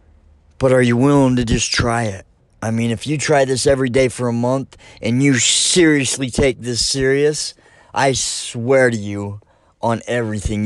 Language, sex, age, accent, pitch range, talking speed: English, male, 30-49, American, 100-125 Hz, 175 wpm